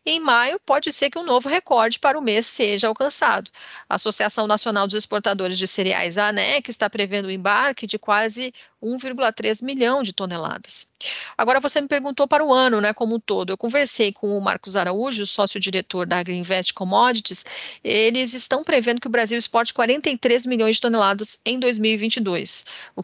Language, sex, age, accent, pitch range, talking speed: English, female, 30-49, Brazilian, 205-255 Hz, 175 wpm